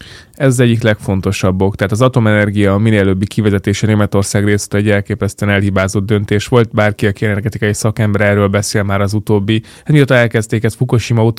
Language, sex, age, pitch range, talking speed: Hungarian, male, 20-39, 100-115 Hz, 160 wpm